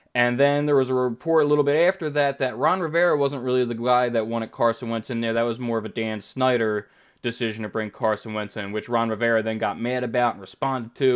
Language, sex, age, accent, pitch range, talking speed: English, male, 20-39, American, 115-140 Hz, 255 wpm